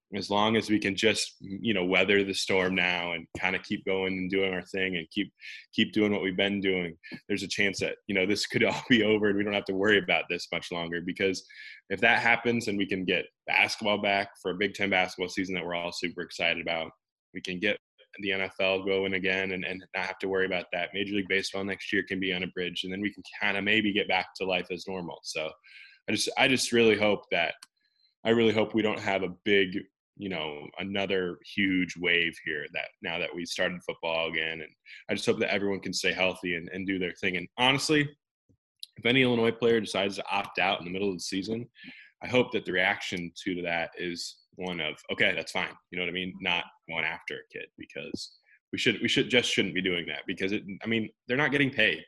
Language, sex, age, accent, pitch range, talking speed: English, male, 20-39, American, 90-105 Hz, 245 wpm